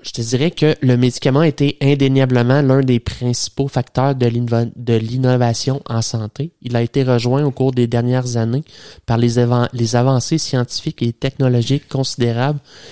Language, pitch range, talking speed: English, 120-140 Hz, 165 wpm